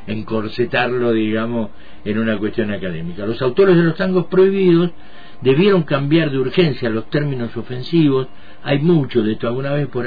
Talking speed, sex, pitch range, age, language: 155 wpm, male, 100-130 Hz, 50-69, Spanish